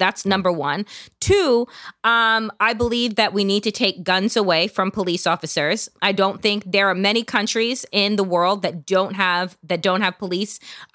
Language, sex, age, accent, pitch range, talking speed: English, female, 20-39, American, 190-235 Hz, 185 wpm